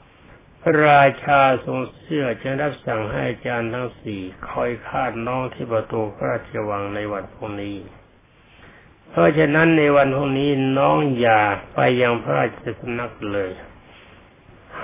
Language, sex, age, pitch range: Thai, male, 60-79, 110-140 Hz